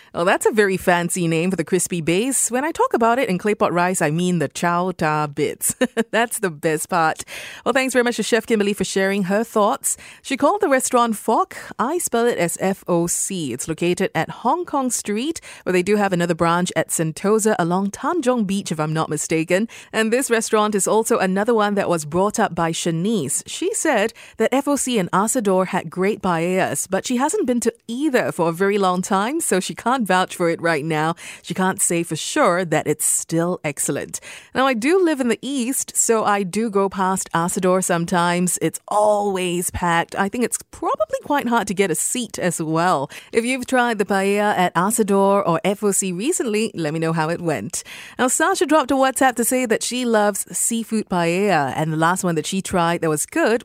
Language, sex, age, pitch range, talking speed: English, female, 30-49, 175-230 Hz, 210 wpm